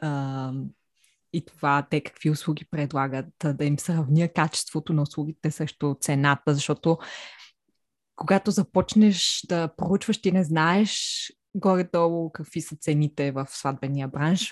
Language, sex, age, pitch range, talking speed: Bulgarian, female, 20-39, 145-185 Hz, 125 wpm